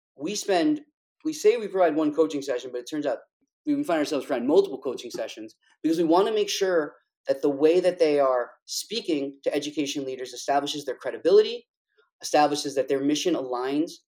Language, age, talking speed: English, 30-49, 190 wpm